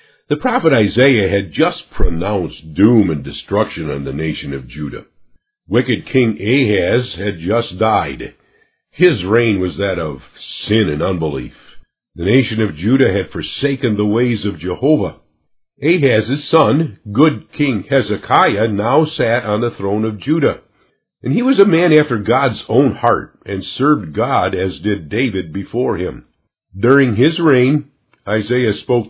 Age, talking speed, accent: 50-69, 150 wpm, American